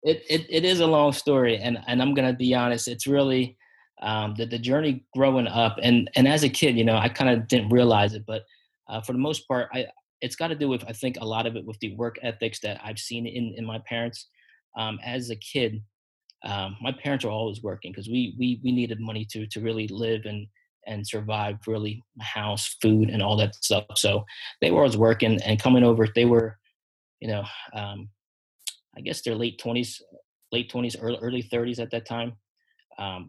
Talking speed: 220 wpm